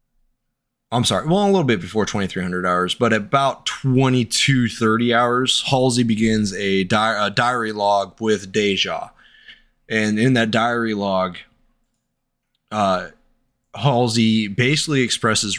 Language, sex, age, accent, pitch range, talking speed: English, male, 20-39, American, 105-125 Hz, 115 wpm